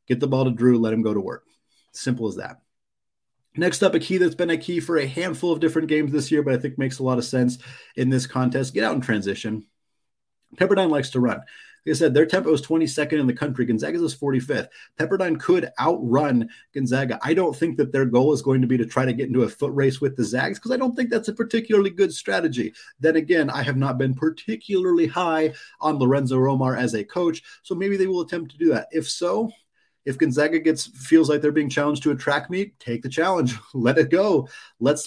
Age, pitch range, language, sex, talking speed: 30-49, 125-160 Hz, English, male, 235 wpm